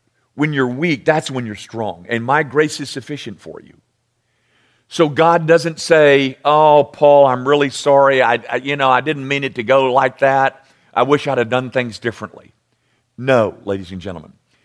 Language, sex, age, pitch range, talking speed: English, male, 50-69, 115-150 Hz, 190 wpm